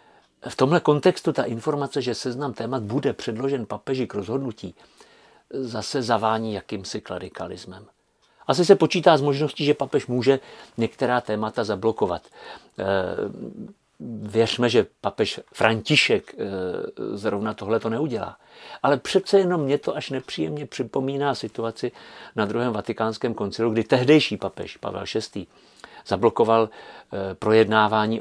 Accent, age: native, 50-69